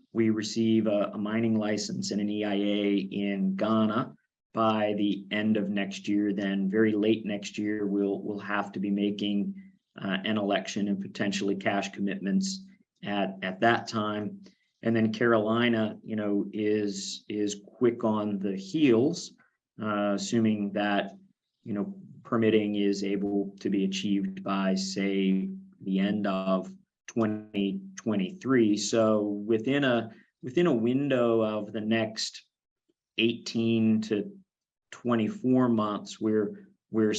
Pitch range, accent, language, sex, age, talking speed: 100-115 Hz, American, English, male, 40-59, 130 wpm